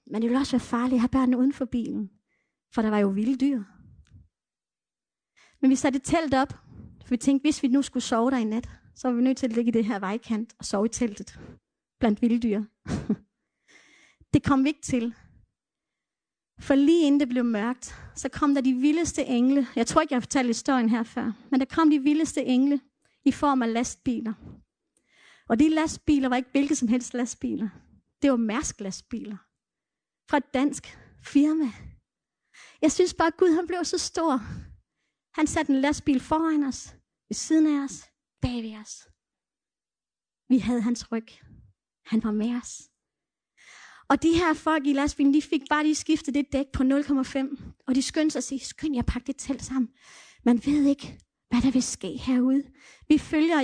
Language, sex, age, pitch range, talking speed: Danish, female, 30-49, 240-290 Hz, 190 wpm